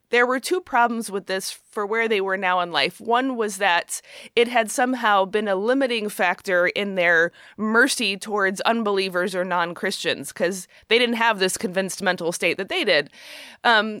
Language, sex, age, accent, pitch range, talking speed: English, female, 30-49, American, 185-240 Hz, 180 wpm